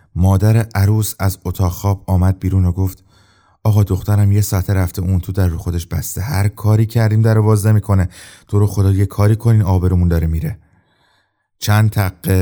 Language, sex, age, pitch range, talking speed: Persian, male, 30-49, 85-105 Hz, 180 wpm